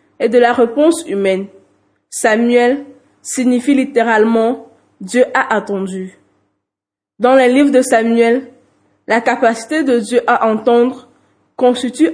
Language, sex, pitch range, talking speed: French, female, 210-255 Hz, 115 wpm